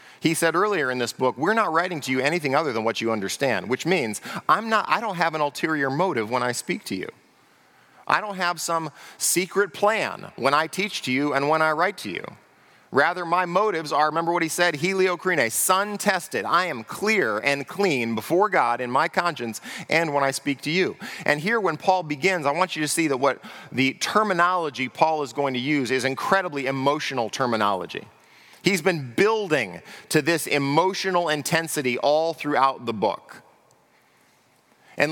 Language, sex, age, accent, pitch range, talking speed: English, male, 40-59, American, 135-185 Hz, 190 wpm